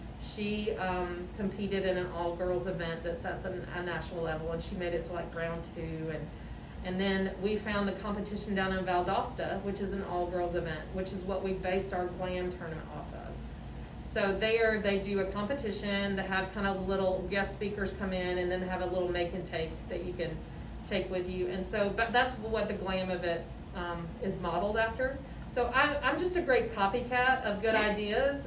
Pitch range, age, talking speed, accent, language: 175-205 Hz, 40-59, 210 wpm, American, English